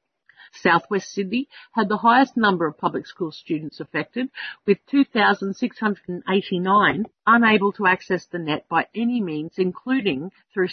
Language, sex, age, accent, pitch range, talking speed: English, female, 50-69, Australian, 175-230 Hz, 135 wpm